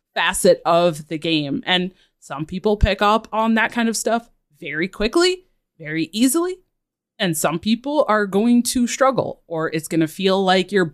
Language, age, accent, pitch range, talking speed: English, 20-39, American, 165-210 Hz, 175 wpm